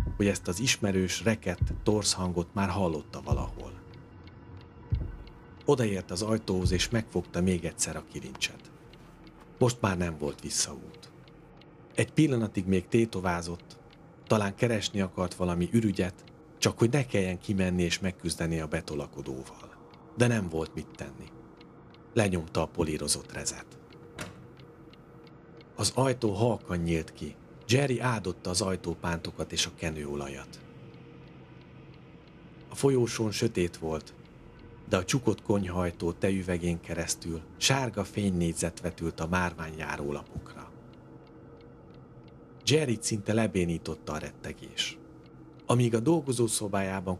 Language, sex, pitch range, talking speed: Hungarian, male, 85-115 Hz, 110 wpm